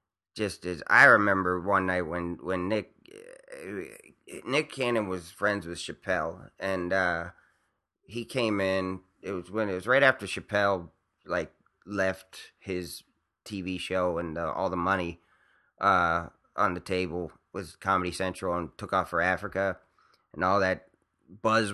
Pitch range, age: 90-110 Hz, 30-49